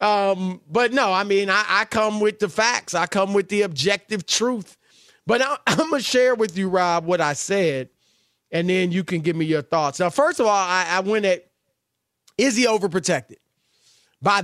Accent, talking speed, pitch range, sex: American, 205 wpm, 170-255 Hz, male